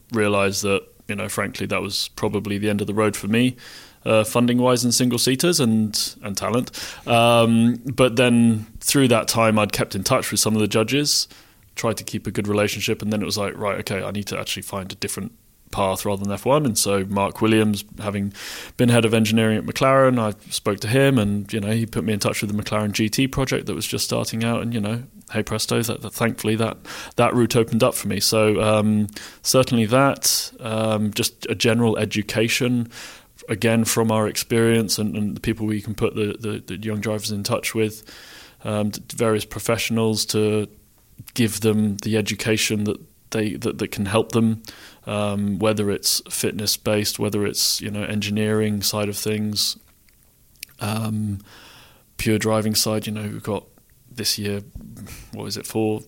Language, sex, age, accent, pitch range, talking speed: English, male, 20-39, British, 105-115 Hz, 195 wpm